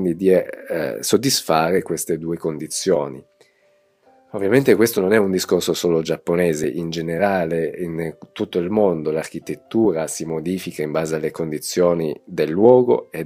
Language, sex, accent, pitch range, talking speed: Italian, male, native, 80-105 Hz, 135 wpm